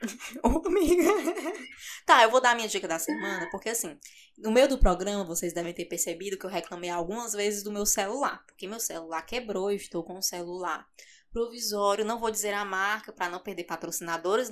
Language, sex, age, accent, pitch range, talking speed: Portuguese, female, 20-39, Brazilian, 185-235 Hz, 190 wpm